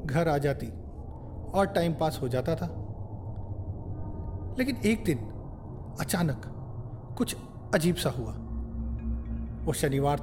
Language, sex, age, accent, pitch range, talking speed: Hindi, male, 40-59, native, 100-160 Hz, 110 wpm